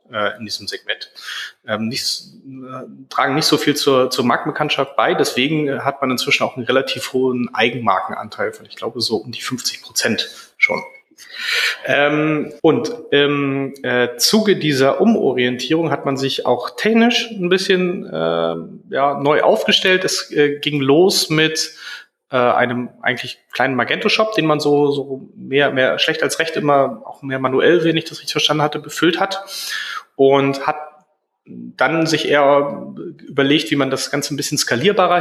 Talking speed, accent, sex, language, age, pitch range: 160 wpm, German, male, German, 30-49, 130-160 Hz